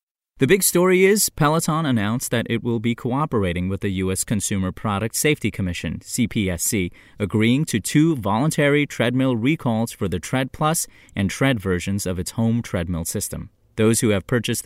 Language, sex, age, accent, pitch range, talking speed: English, male, 30-49, American, 95-125 Hz, 170 wpm